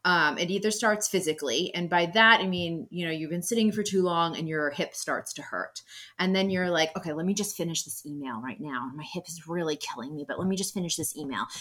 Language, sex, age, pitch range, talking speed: English, female, 30-49, 170-205 Hz, 260 wpm